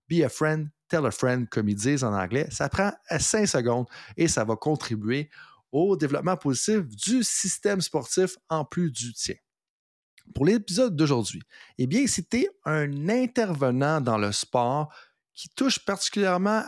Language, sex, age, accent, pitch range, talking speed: French, male, 30-49, Canadian, 125-185 Hz, 160 wpm